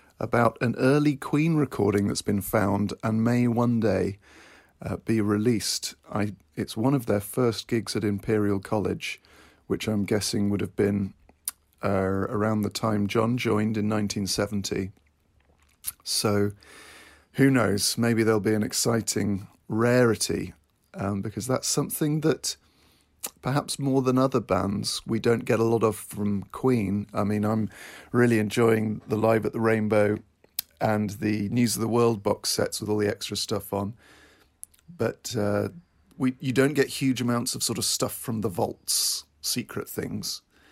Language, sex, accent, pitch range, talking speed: English, male, British, 100-120 Hz, 155 wpm